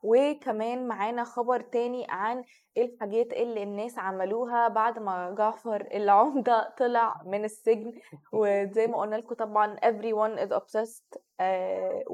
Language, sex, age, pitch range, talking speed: Arabic, female, 20-39, 205-240 Hz, 120 wpm